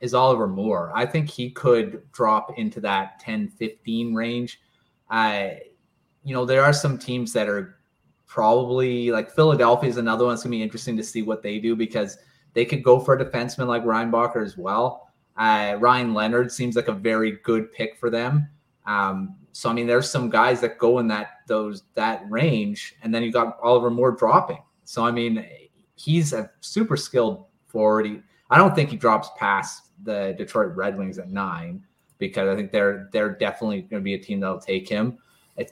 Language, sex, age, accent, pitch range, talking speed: English, male, 30-49, American, 110-140 Hz, 195 wpm